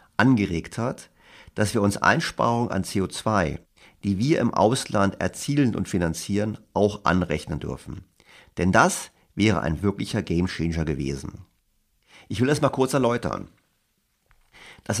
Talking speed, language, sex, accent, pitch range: 130 wpm, German, male, German, 90-115 Hz